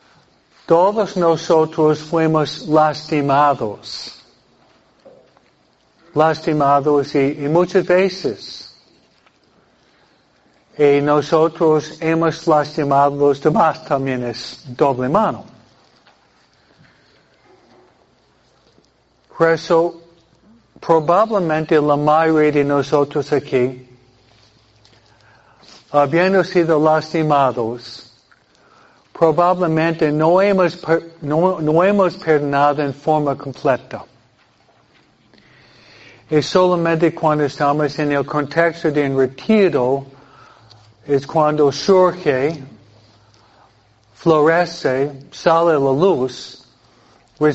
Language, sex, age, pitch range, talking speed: Spanish, male, 60-79, 135-165 Hz, 75 wpm